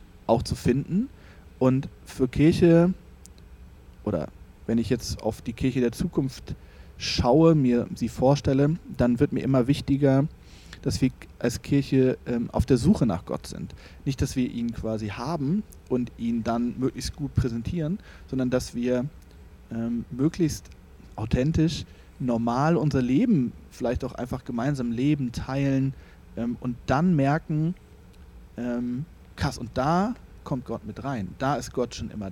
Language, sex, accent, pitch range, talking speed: German, male, German, 105-135 Hz, 145 wpm